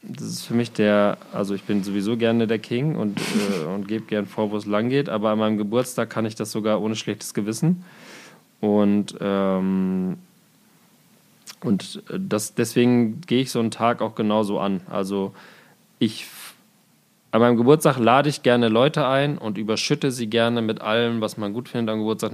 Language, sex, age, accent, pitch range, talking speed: German, male, 20-39, German, 105-125 Hz, 185 wpm